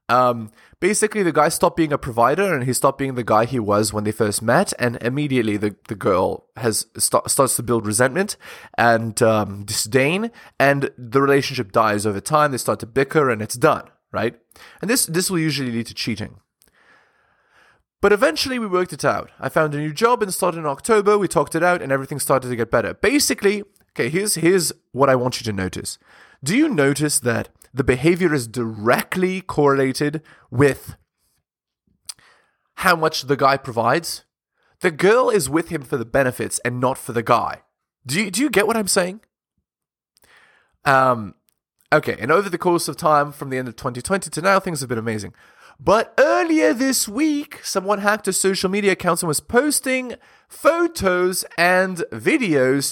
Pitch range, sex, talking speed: 120-185 Hz, male, 185 wpm